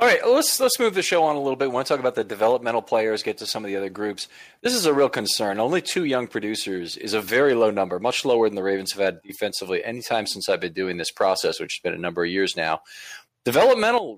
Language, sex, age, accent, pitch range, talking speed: English, male, 40-59, American, 105-145 Hz, 275 wpm